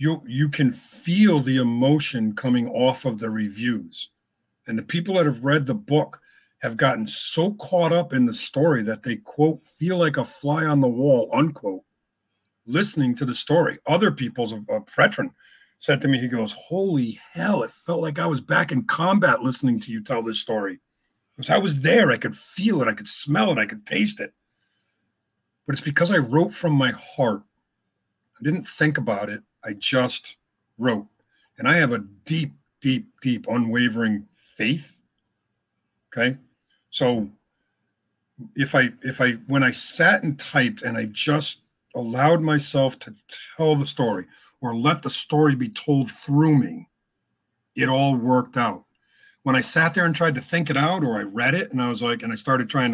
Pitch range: 125-160 Hz